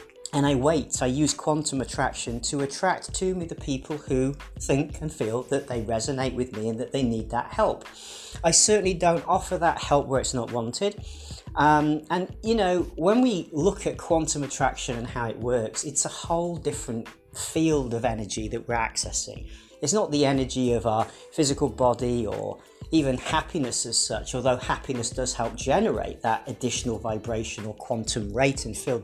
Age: 40-59